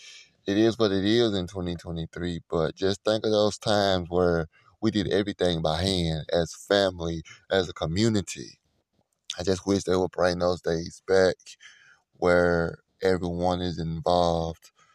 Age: 20-39